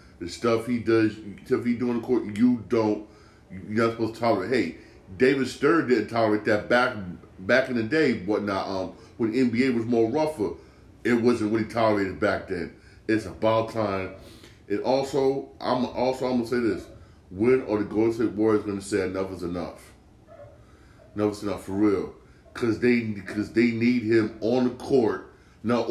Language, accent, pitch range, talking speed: English, American, 105-120 Hz, 190 wpm